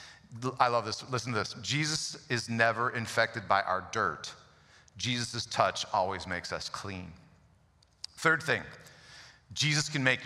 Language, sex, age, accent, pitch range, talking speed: English, male, 40-59, American, 115-145 Hz, 140 wpm